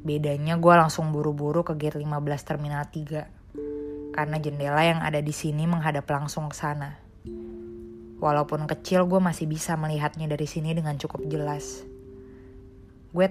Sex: female